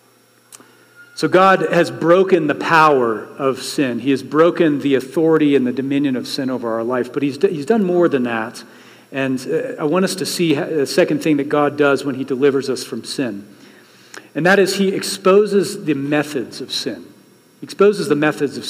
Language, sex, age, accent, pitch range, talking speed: English, male, 40-59, American, 140-185 Hz, 190 wpm